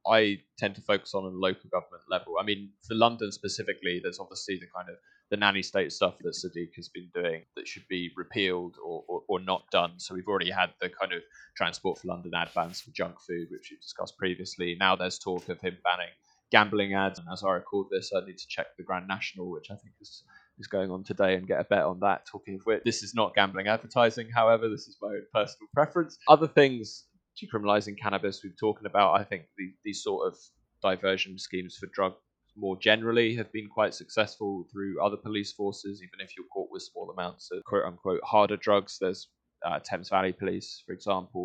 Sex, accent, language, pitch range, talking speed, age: male, British, English, 95-110 Hz, 220 wpm, 20-39